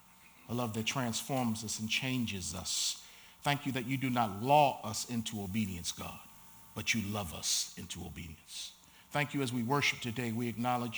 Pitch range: 110-145 Hz